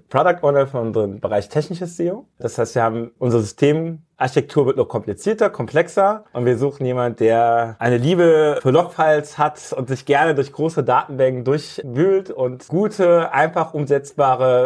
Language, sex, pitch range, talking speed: German, male, 125-160 Hz, 160 wpm